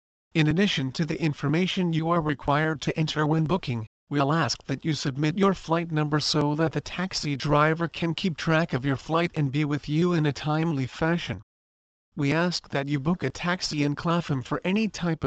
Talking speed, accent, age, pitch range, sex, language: 200 wpm, American, 40-59, 140-170 Hz, male, English